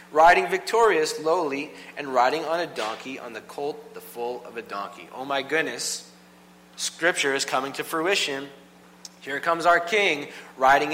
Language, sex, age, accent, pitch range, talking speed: English, male, 20-39, American, 135-195 Hz, 160 wpm